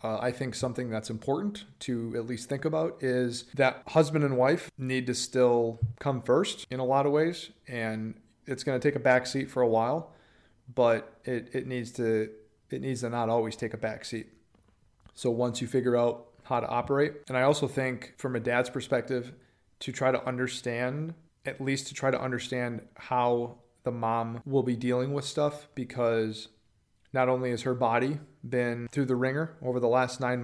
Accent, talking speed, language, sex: American, 195 wpm, English, male